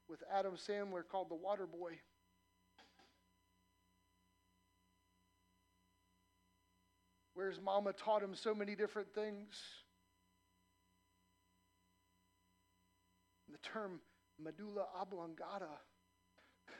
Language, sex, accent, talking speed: English, male, American, 70 wpm